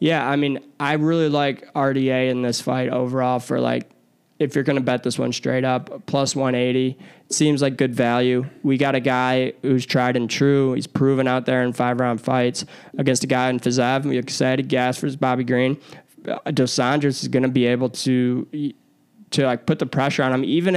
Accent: American